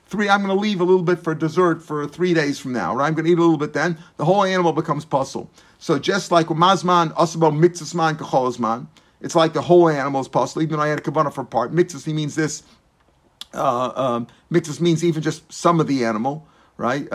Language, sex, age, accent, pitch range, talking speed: English, male, 50-69, American, 155-185 Hz, 215 wpm